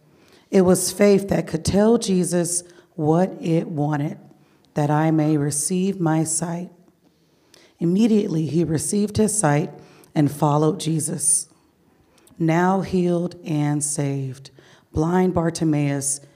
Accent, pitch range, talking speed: American, 150-175 Hz, 110 wpm